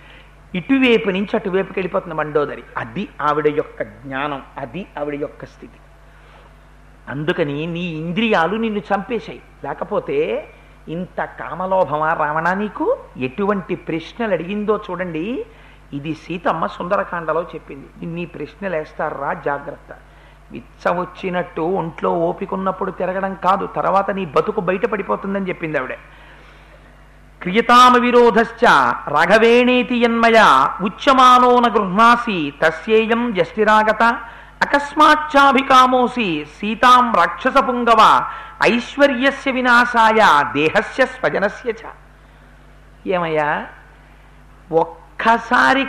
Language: Telugu